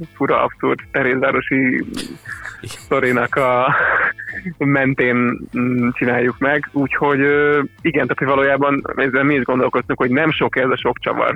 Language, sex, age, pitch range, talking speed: Hungarian, male, 20-39, 125-145 Hz, 120 wpm